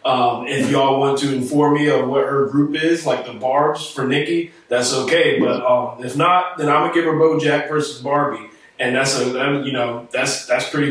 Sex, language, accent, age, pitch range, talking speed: male, English, American, 20-39, 140-175 Hz, 215 wpm